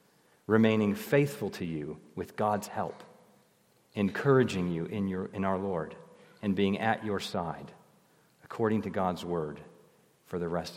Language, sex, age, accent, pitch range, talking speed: English, male, 40-59, American, 95-130 Hz, 145 wpm